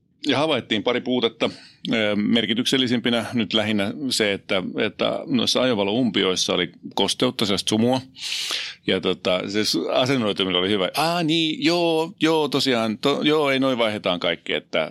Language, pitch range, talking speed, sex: Finnish, 90-125 Hz, 135 wpm, male